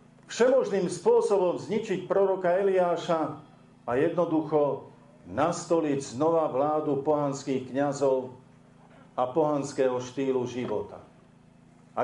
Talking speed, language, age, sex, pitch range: 85 wpm, Slovak, 50-69, male, 135-165 Hz